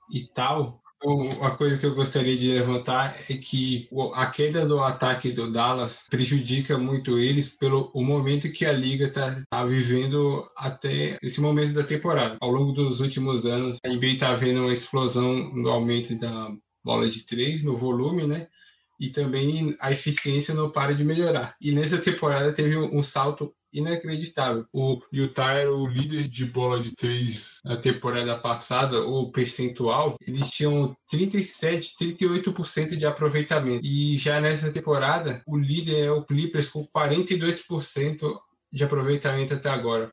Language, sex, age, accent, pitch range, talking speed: Portuguese, male, 20-39, Brazilian, 125-150 Hz, 155 wpm